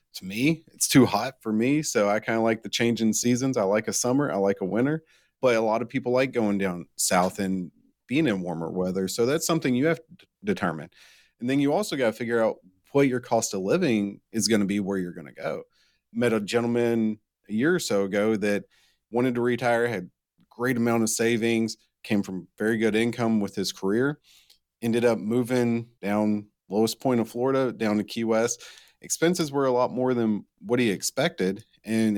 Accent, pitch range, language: American, 100-125 Hz, English